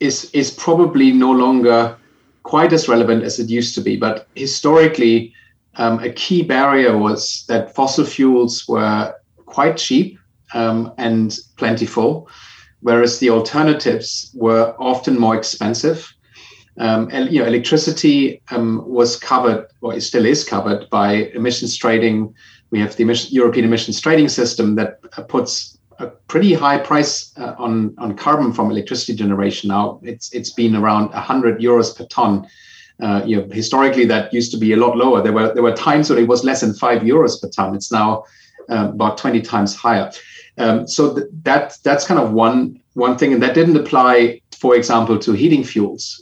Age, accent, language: 30-49, German, English